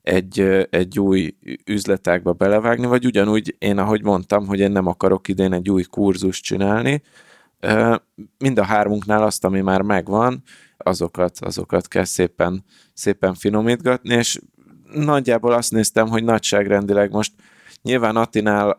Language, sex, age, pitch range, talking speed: Hungarian, male, 20-39, 95-105 Hz, 130 wpm